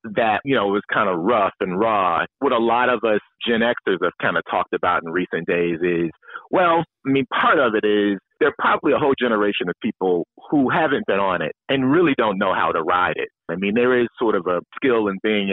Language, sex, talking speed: English, male, 245 wpm